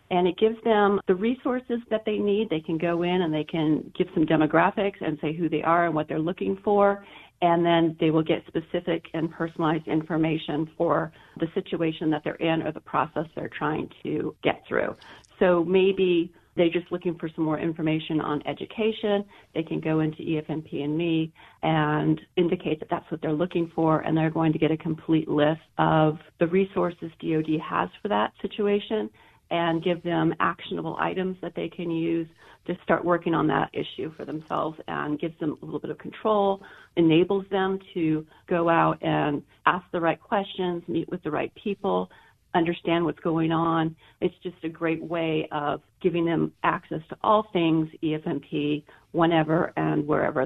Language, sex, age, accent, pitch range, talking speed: English, female, 40-59, American, 155-180 Hz, 185 wpm